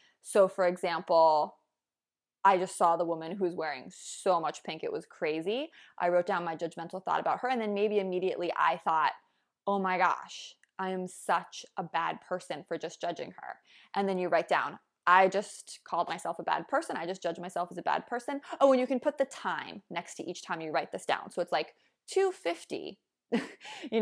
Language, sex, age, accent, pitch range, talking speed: English, female, 20-39, American, 175-255 Hz, 205 wpm